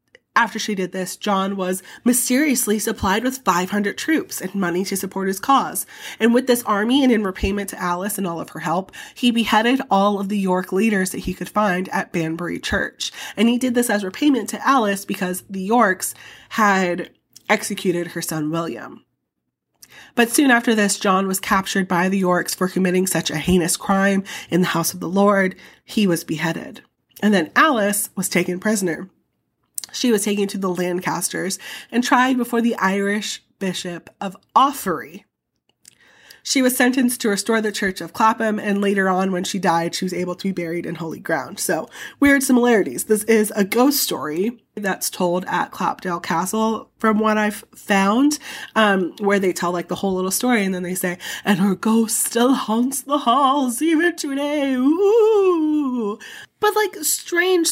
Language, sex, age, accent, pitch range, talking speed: English, female, 20-39, American, 185-245 Hz, 180 wpm